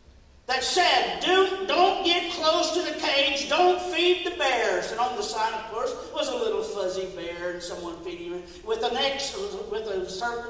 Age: 50-69